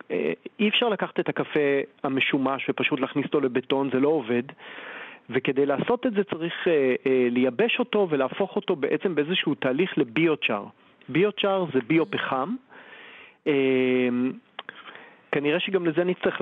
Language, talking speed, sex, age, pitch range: Hebrew, 130 wpm, male, 40-59, 130-175 Hz